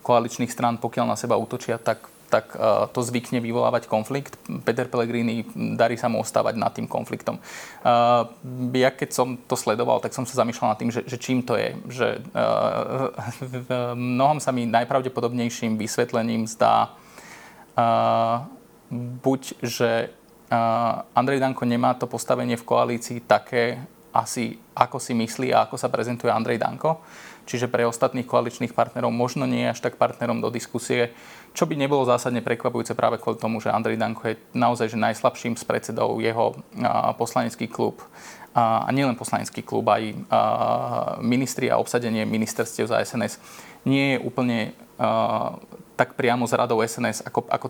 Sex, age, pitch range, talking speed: male, 20-39, 115-125 Hz, 155 wpm